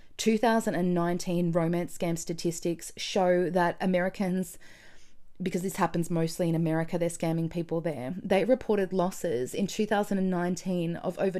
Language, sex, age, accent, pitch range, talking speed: English, female, 20-39, Australian, 170-195 Hz, 125 wpm